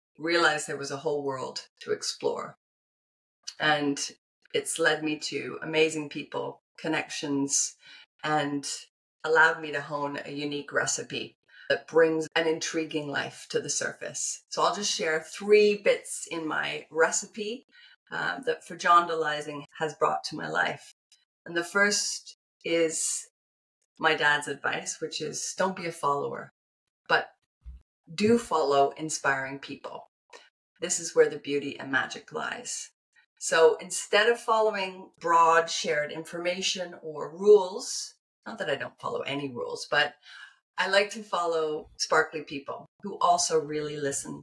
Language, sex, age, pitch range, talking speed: English, female, 30-49, 150-210 Hz, 140 wpm